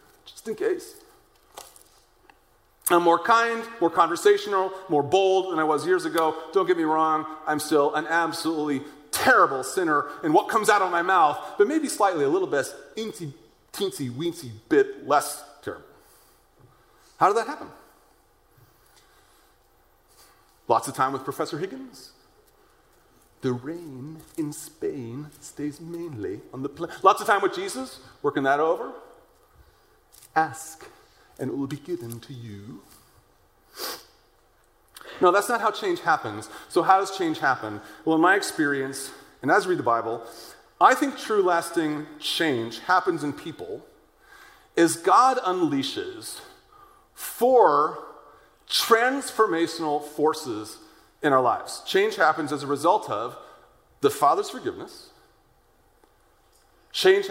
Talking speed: 130 wpm